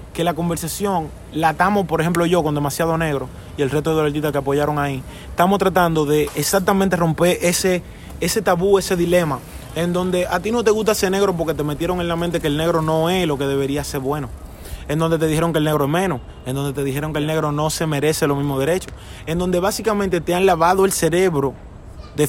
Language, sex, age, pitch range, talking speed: English, male, 20-39, 140-170 Hz, 230 wpm